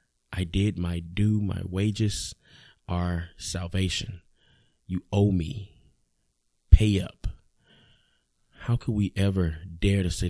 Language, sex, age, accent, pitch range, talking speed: English, male, 20-39, American, 90-105 Hz, 115 wpm